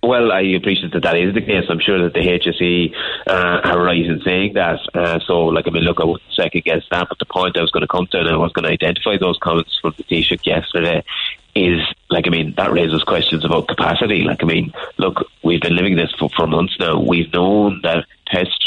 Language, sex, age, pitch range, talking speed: English, male, 30-49, 85-90 Hz, 240 wpm